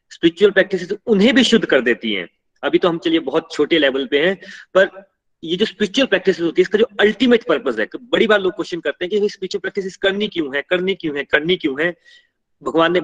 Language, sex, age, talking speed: Hindi, male, 30-49, 100 wpm